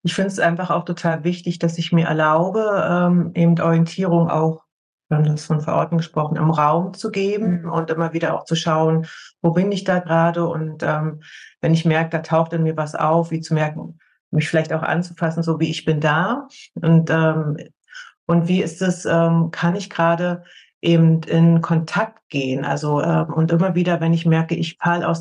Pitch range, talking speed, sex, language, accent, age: 160-185 Hz, 200 wpm, female, German, German, 30-49